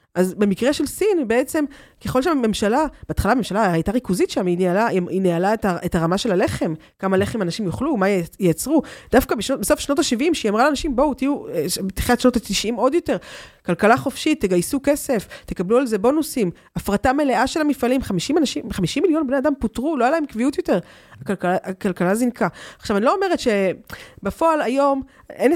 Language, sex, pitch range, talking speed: Hebrew, female, 185-275 Hz, 170 wpm